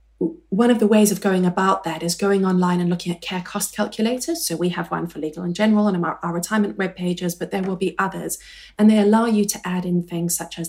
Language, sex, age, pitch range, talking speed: English, female, 30-49, 175-210 Hz, 260 wpm